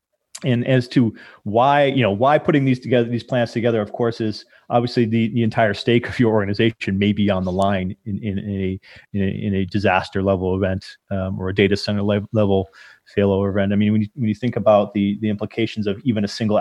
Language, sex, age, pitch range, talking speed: English, male, 30-49, 100-120 Hz, 220 wpm